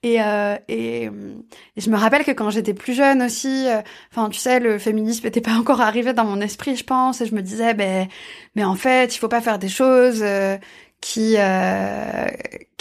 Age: 20-39